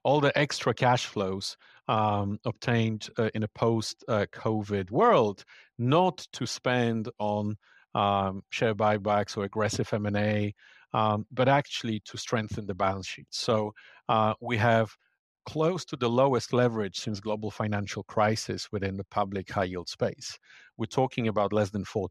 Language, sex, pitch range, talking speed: English, male, 105-125 Hz, 150 wpm